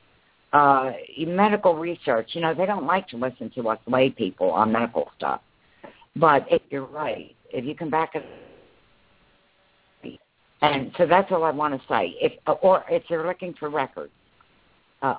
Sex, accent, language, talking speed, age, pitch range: female, American, English, 160 wpm, 60-79, 130-170 Hz